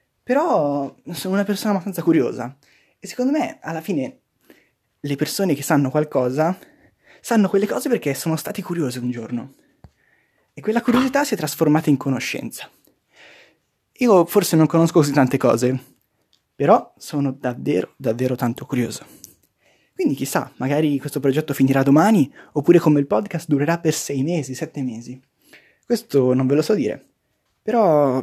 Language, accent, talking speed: Italian, native, 150 wpm